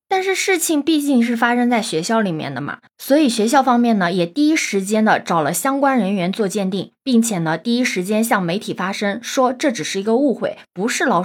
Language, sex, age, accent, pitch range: Chinese, female, 20-39, native, 185-245 Hz